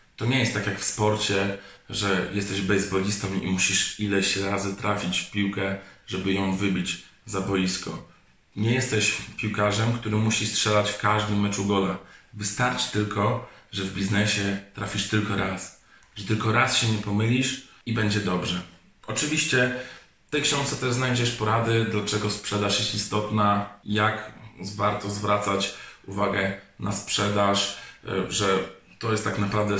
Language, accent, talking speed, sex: Polish, native, 145 wpm, male